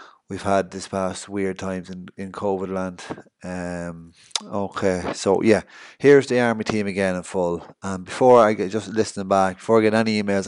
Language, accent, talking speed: English, Irish, 195 wpm